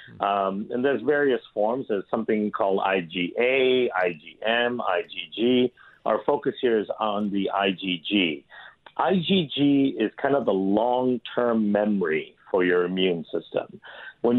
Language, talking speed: English, 125 wpm